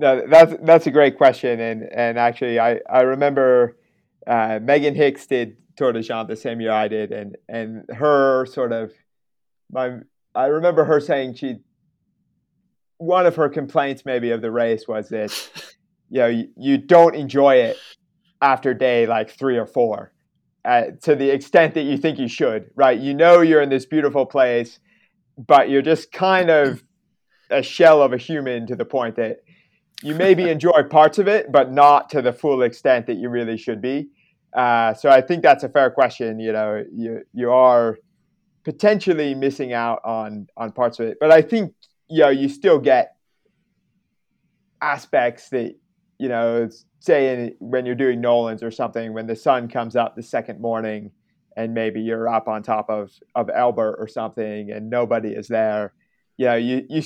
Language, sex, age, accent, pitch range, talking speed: English, male, 30-49, American, 115-155 Hz, 180 wpm